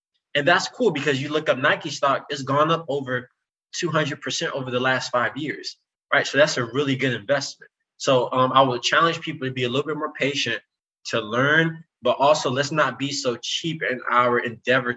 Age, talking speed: 20-39, 210 wpm